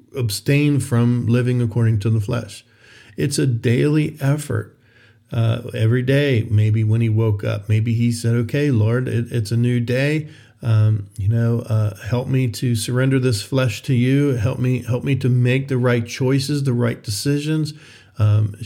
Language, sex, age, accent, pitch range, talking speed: English, male, 50-69, American, 115-135 Hz, 175 wpm